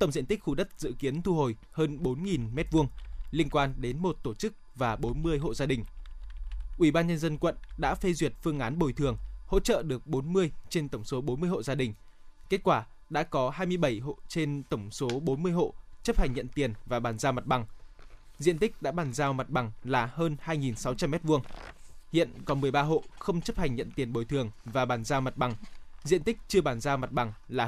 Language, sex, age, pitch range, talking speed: Vietnamese, male, 20-39, 130-170 Hz, 220 wpm